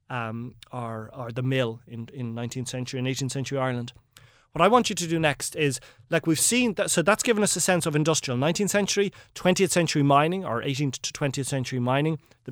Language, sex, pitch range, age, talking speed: English, male, 125-160 Hz, 30-49, 220 wpm